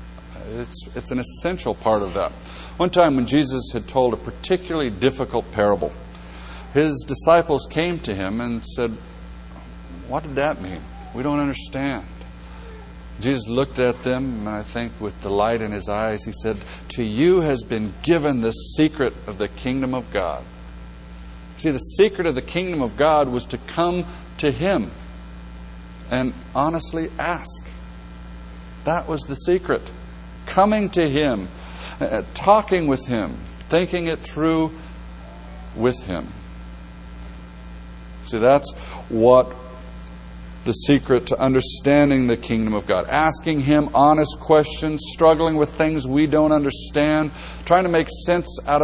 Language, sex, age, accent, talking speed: English, male, 60-79, American, 140 wpm